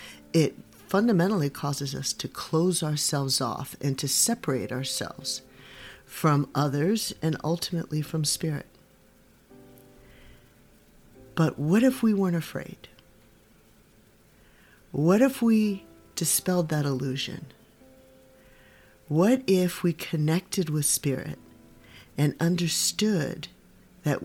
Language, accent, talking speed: English, American, 95 wpm